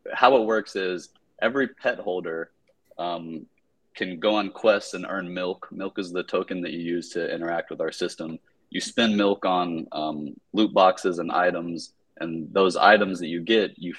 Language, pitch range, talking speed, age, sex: English, 85-100 Hz, 185 wpm, 30-49, male